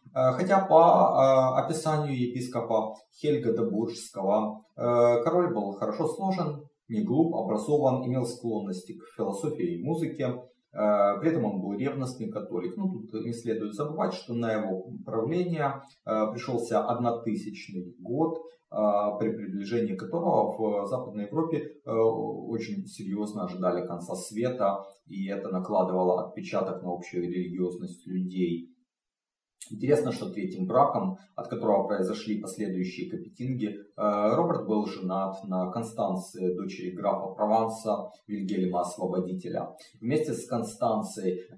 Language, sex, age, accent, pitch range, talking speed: Russian, male, 30-49, native, 95-130 Hz, 110 wpm